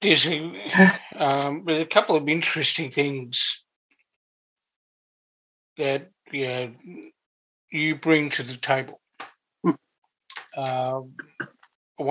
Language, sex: English, male